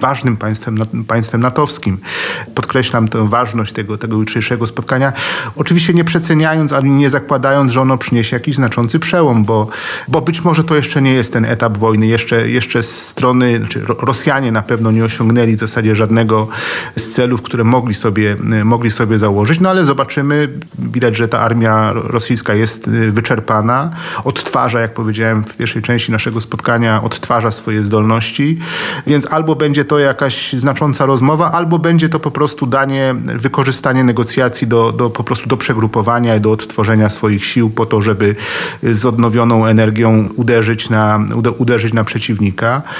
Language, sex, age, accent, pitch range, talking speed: Polish, male, 40-59, native, 110-135 Hz, 160 wpm